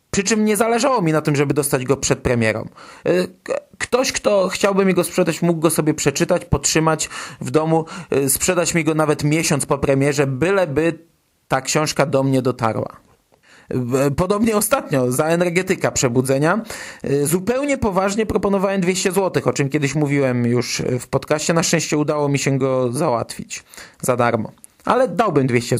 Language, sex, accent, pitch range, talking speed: Polish, male, native, 135-180 Hz, 155 wpm